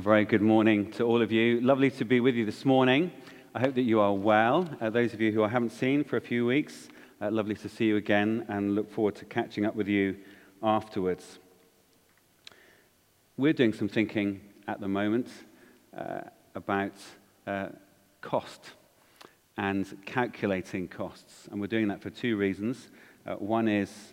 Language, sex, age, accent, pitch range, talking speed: English, male, 40-59, British, 95-110 Hz, 175 wpm